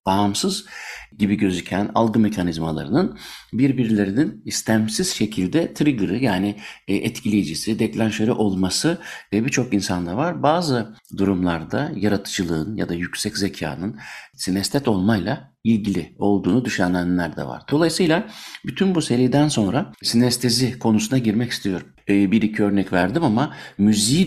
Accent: native